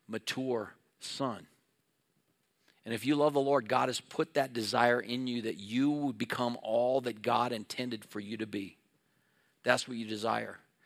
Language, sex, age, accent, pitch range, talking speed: English, male, 50-69, American, 125-160 Hz, 170 wpm